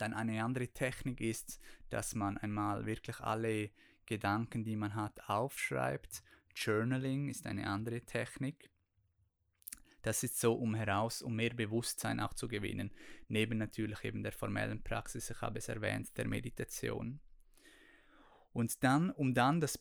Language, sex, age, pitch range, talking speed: German, male, 20-39, 105-120 Hz, 145 wpm